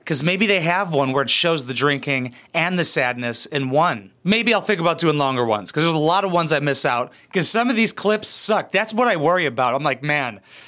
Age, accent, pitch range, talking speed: 30-49, American, 135-180 Hz, 255 wpm